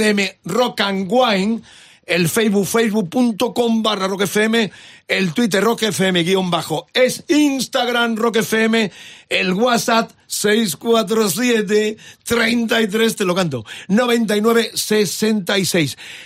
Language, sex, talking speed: Spanish, male, 85 wpm